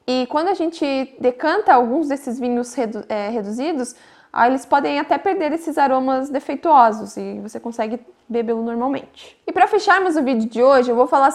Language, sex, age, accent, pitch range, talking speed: Portuguese, female, 10-29, Brazilian, 245-320 Hz, 180 wpm